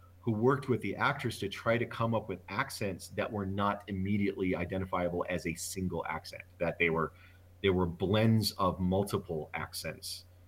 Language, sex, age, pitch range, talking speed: English, male, 30-49, 90-125 Hz, 170 wpm